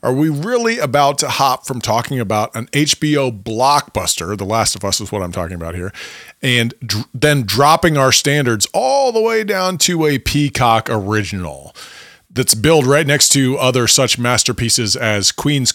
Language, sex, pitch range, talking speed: English, male, 110-150 Hz, 170 wpm